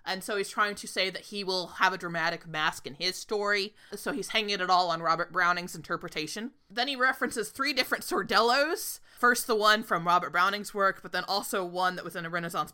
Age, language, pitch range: 20-39, English, 180-230 Hz